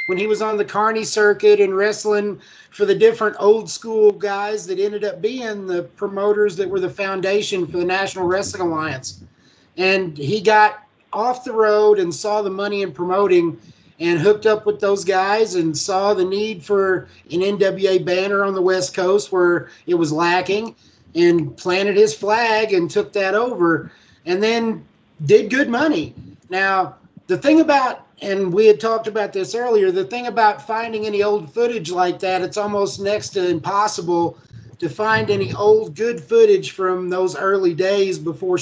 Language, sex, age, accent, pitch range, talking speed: English, male, 30-49, American, 175-210 Hz, 175 wpm